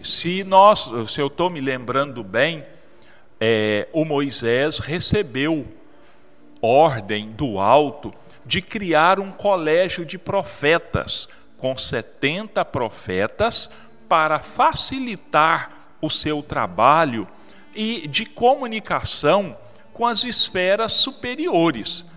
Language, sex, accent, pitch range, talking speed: Portuguese, male, Brazilian, 115-190 Hz, 90 wpm